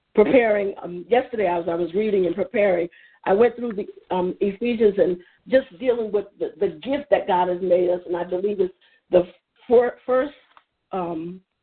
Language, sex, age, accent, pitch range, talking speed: English, female, 50-69, American, 185-230 Hz, 185 wpm